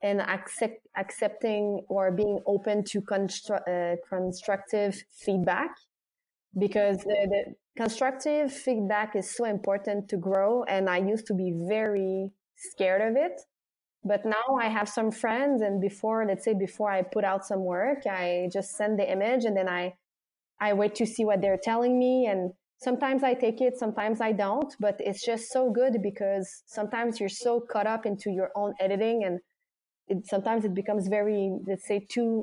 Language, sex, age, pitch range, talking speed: English, female, 20-39, 190-225 Hz, 175 wpm